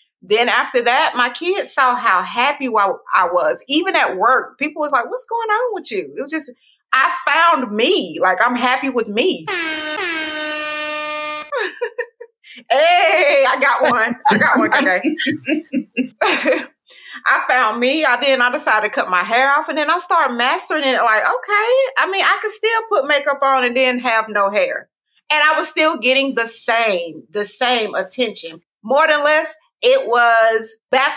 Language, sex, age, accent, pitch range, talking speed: English, female, 30-49, American, 230-325 Hz, 175 wpm